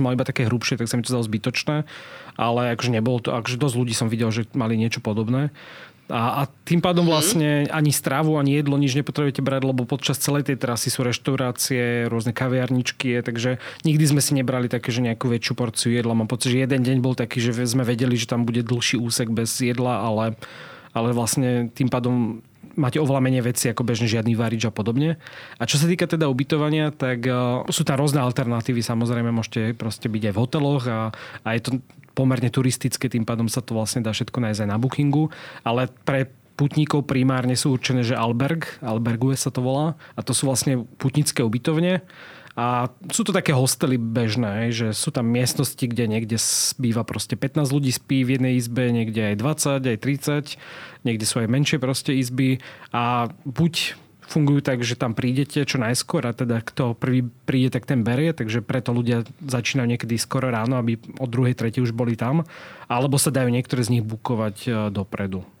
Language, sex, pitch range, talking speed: Slovak, male, 120-140 Hz, 190 wpm